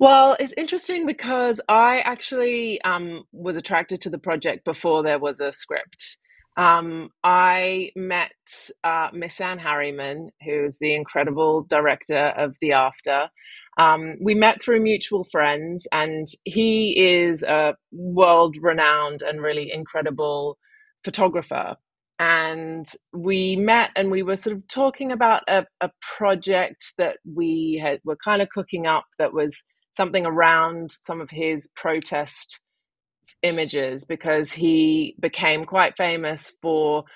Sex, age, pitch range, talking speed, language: female, 30-49, 150-190 Hz, 130 wpm, English